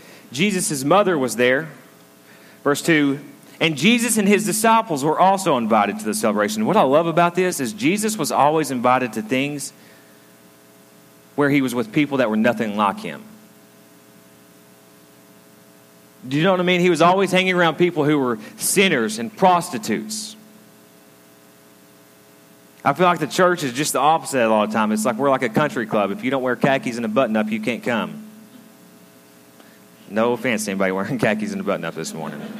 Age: 30-49